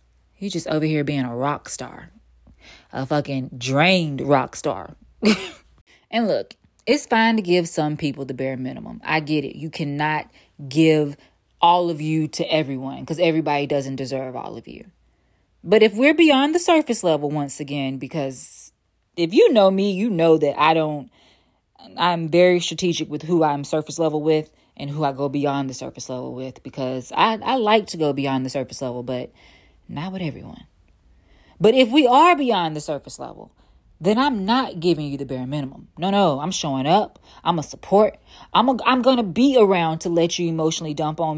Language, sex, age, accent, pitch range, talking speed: English, female, 20-39, American, 145-195 Hz, 190 wpm